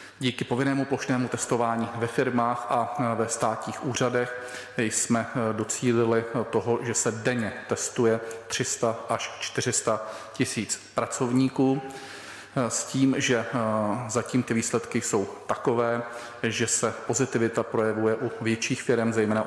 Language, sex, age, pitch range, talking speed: Czech, male, 40-59, 110-125 Hz, 115 wpm